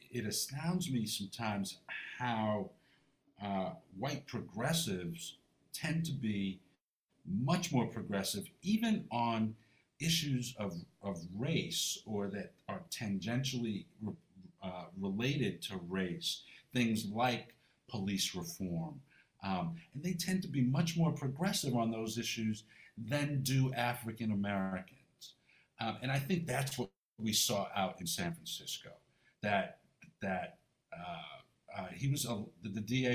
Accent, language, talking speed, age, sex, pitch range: American, English, 125 wpm, 50-69, male, 105-150 Hz